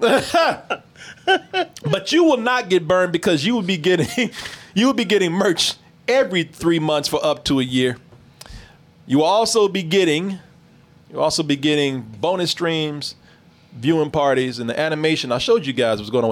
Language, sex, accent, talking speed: English, male, American, 180 wpm